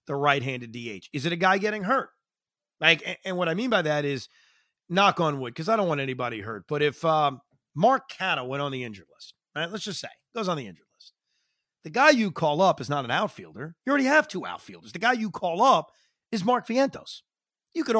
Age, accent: 40-59, American